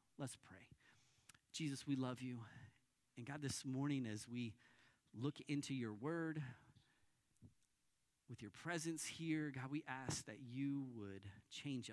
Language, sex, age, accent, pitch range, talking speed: English, male, 40-59, American, 120-155 Hz, 135 wpm